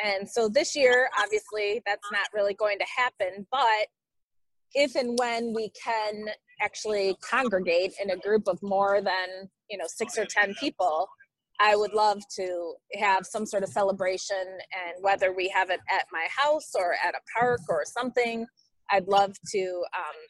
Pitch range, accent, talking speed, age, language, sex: 195-245 Hz, American, 170 wpm, 20-39, English, female